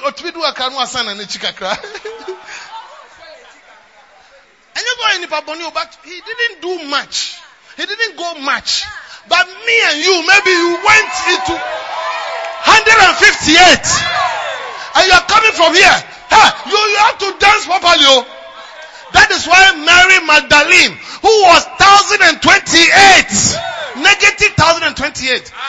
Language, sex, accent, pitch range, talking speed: English, male, Nigerian, 320-410 Hz, 95 wpm